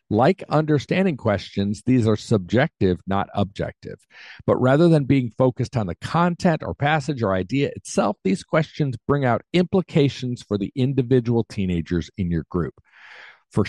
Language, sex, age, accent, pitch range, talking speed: English, male, 50-69, American, 95-135 Hz, 150 wpm